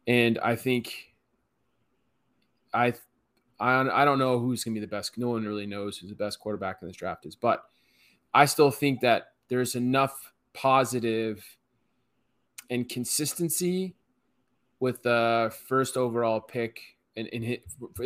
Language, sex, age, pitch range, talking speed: English, male, 20-39, 110-130 Hz, 145 wpm